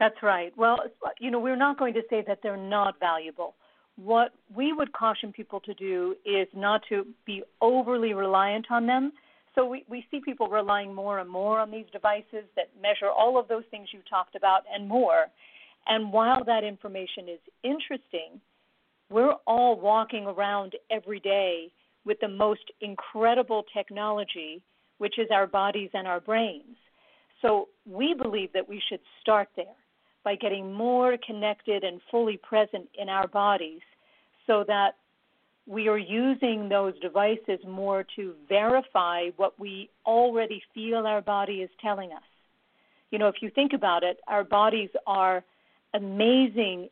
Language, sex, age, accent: English, female, 50-69, American